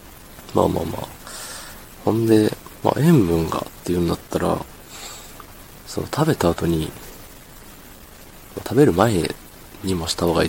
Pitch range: 85-105 Hz